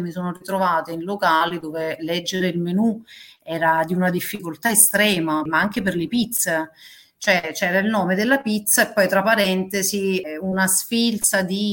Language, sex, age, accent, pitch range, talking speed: Italian, female, 40-59, native, 180-220 Hz, 165 wpm